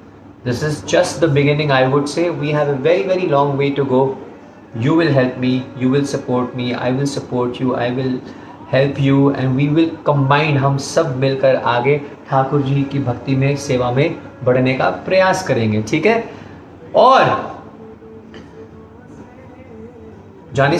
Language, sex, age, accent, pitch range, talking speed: Hindi, male, 30-49, native, 125-150 Hz, 160 wpm